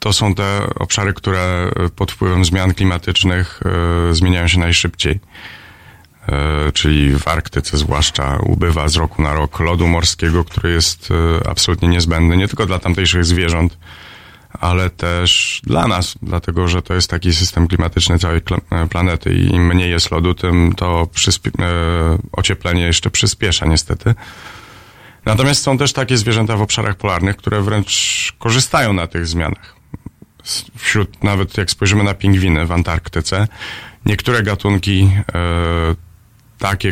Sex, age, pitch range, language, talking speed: male, 30-49, 85-105 Hz, Polish, 130 wpm